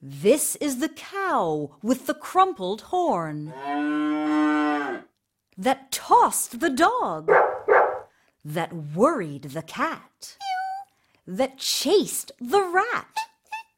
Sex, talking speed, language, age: female, 85 wpm, English, 50-69